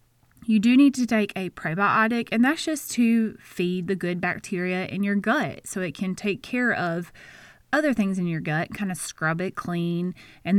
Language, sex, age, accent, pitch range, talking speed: English, female, 20-39, American, 170-205 Hz, 200 wpm